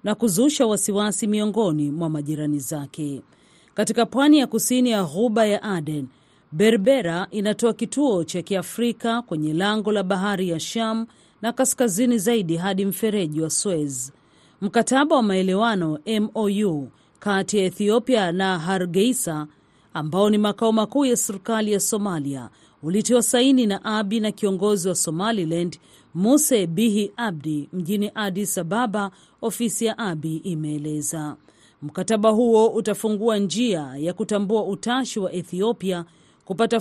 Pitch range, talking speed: 175-225 Hz, 125 wpm